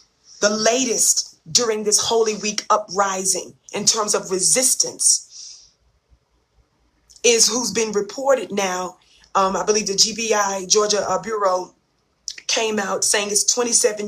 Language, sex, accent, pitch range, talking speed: English, female, American, 195-230 Hz, 125 wpm